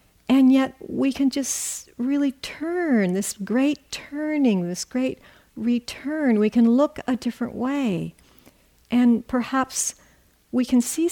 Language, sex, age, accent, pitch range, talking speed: English, female, 60-79, American, 180-235 Hz, 130 wpm